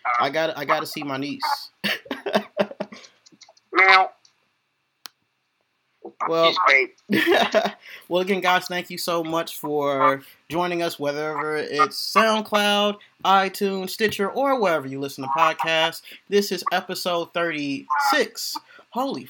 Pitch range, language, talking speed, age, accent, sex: 145-200 Hz, English, 105 wpm, 30-49, American, male